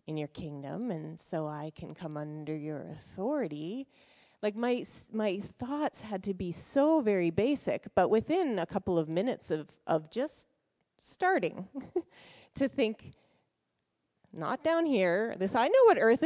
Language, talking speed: English, 150 wpm